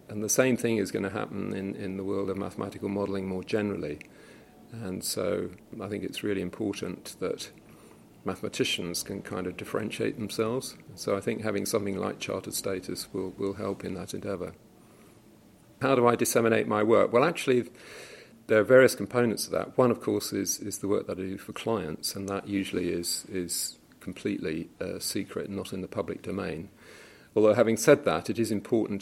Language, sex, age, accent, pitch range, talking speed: English, male, 40-59, British, 90-110 Hz, 190 wpm